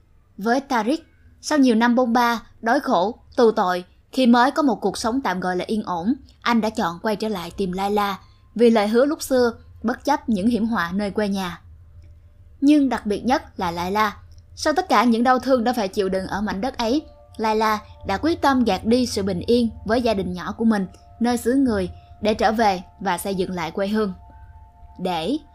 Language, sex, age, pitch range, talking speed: Vietnamese, female, 10-29, 195-250 Hz, 220 wpm